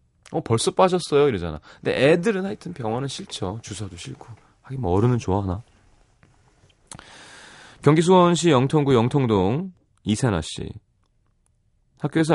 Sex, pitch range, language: male, 90-125 Hz, Korean